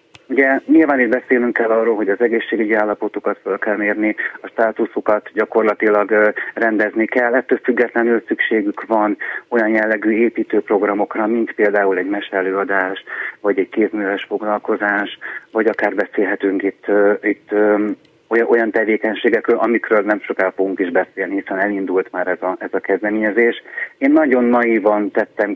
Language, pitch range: Hungarian, 100-115 Hz